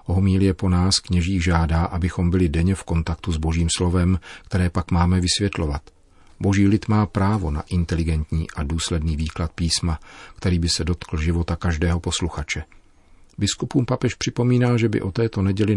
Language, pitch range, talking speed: Czech, 80-95 Hz, 165 wpm